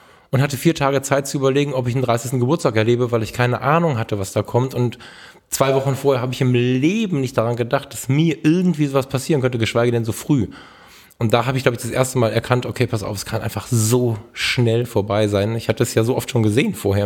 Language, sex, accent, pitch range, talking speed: German, male, German, 110-135 Hz, 250 wpm